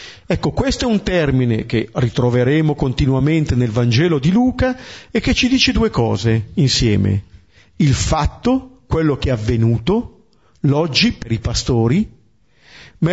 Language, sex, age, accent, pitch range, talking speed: Italian, male, 50-69, native, 120-190 Hz, 135 wpm